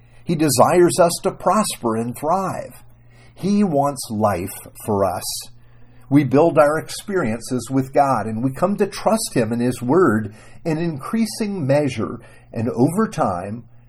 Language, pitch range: English, 120-155 Hz